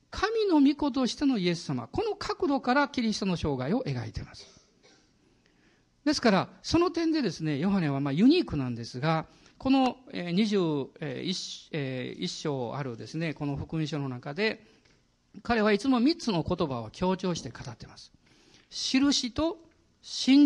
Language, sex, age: Japanese, male, 50-69